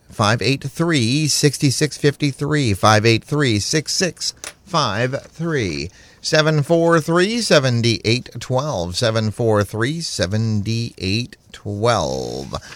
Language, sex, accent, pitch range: English, male, American, 100-135 Hz